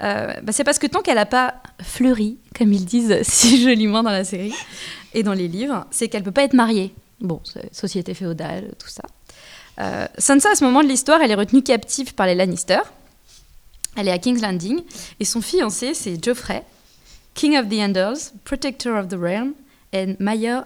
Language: French